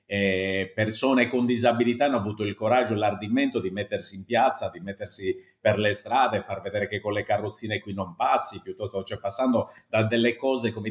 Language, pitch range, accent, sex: Italian, 100-120 Hz, native, male